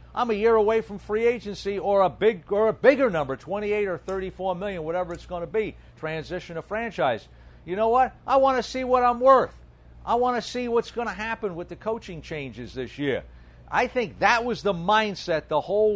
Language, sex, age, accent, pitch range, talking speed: English, male, 50-69, American, 165-215 Hz, 220 wpm